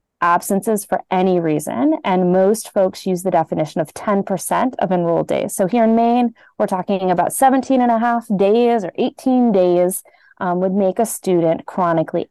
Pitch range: 175-225 Hz